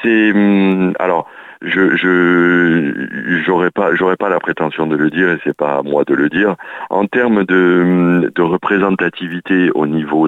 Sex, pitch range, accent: male, 75-90 Hz, French